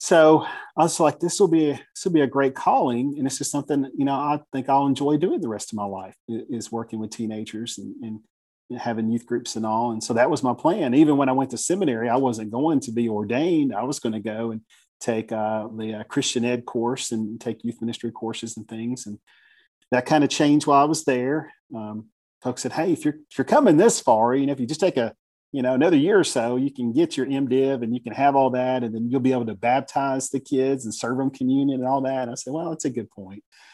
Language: English